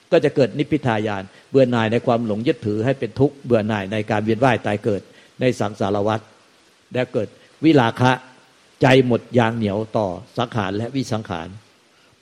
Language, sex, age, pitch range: Thai, male, 60-79, 115-145 Hz